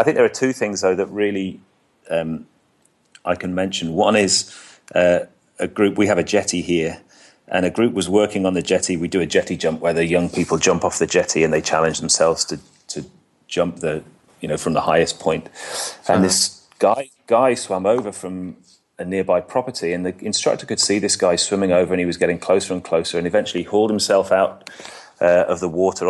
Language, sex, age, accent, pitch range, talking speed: English, male, 30-49, British, 90-110 Hz, 215 wpm